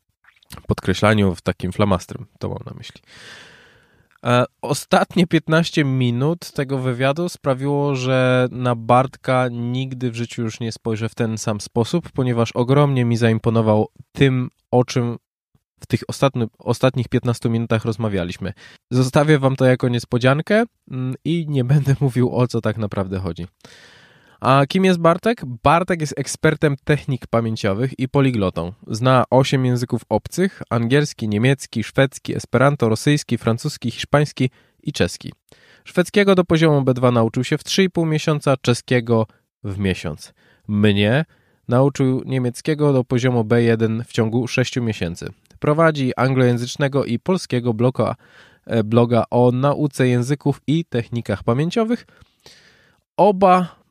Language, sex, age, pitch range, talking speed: Polish, male, 20-39, 115-140 Hz, 125 wpm